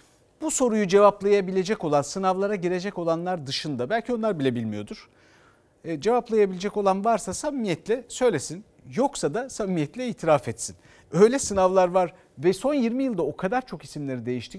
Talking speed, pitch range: 145 wpm, 145-225 Hz